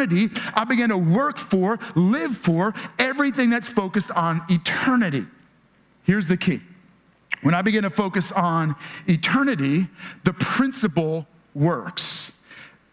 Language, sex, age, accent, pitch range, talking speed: English, male, 40-59, American, 185-255 Hz, 115 wpm